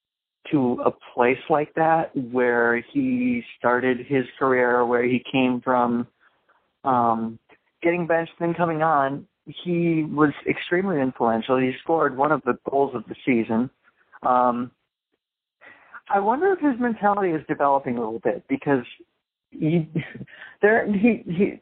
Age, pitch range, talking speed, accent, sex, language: 40-59, 120-160 Hz, 135 wpm, American, male, English